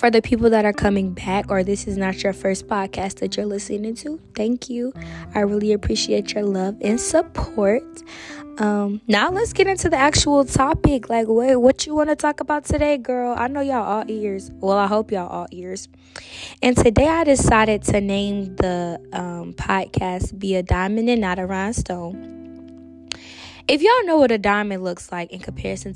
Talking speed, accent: 195 wpm, American